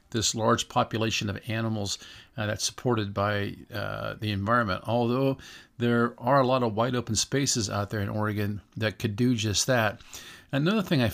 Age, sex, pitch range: 50-69, male, 105-130 Hz